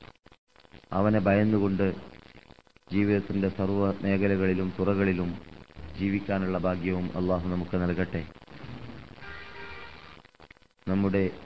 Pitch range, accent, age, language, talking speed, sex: 90-105 Hz, native, 30-49, Malayalam, 65 wpm, male